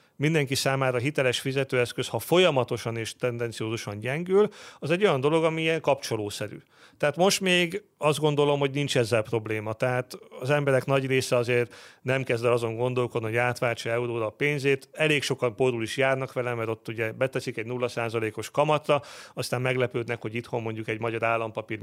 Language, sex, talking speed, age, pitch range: Hungarian, male, 170 wpm, 40-59, 115-145 Hz